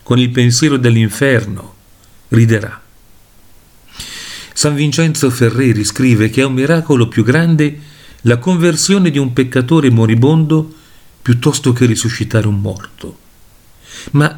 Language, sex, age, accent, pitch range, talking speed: Italian, male, 50-69, native, 110-150 Hz, 115 wpm